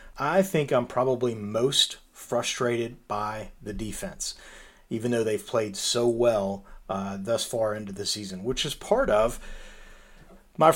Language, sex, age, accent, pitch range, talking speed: English, male, 40-59, American, 110-130 Hz, 145 wpm